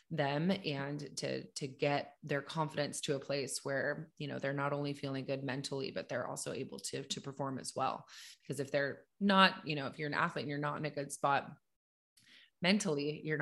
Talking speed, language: 210 wpm, English